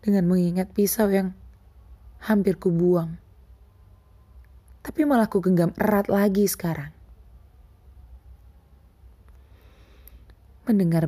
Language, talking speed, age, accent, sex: Indonesian, 75 wpm, 20-39, native, female